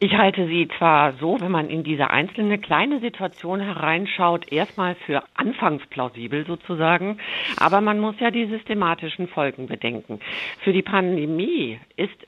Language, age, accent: German, 50-69, German